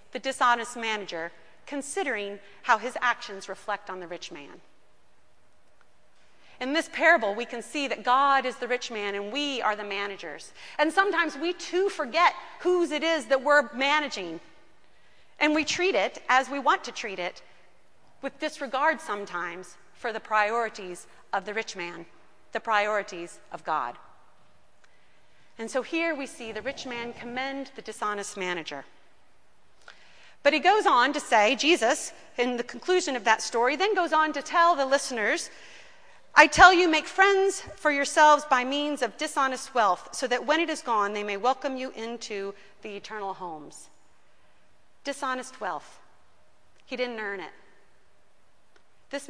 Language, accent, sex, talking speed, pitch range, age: English, American, female, 155 wpm, 205-295 Hz, 30-49